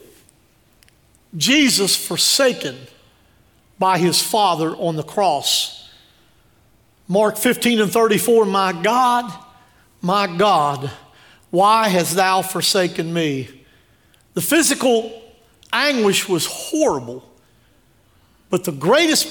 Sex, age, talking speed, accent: male, 50-69, 90 wpm, American